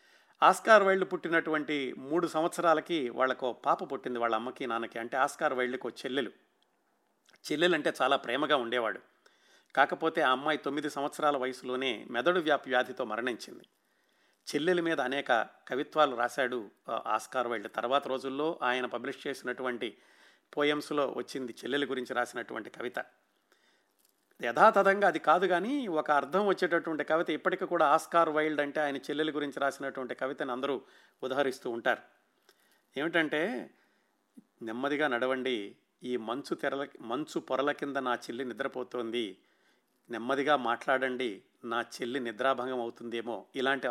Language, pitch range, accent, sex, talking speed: Telugu, 125-160 Hz, native, male, 120 wpm